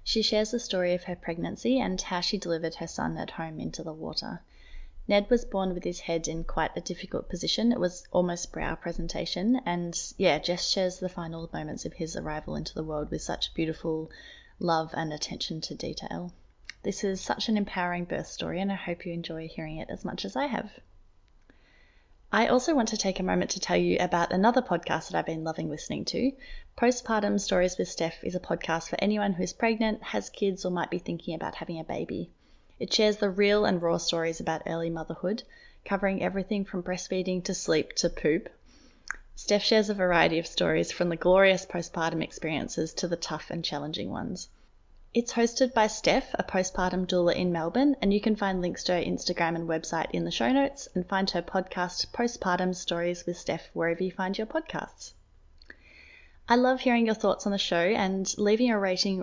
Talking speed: 200 wpm